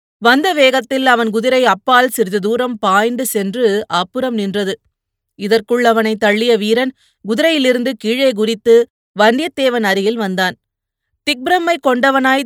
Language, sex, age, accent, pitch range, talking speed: Tamil, female, 30-49, native, 210-255 Hz, 115 wpm